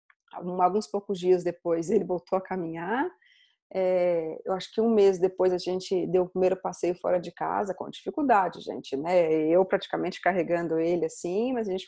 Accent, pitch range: Brazilian, 185-240 Hz